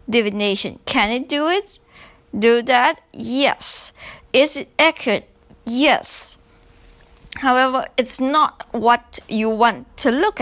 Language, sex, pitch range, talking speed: English, female, 205-270 Hz, 115 wpm